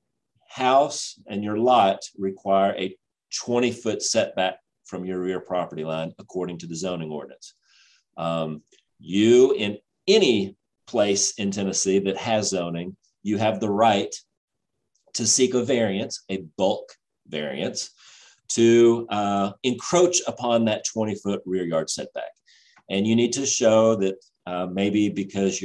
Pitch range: 95-115 Hz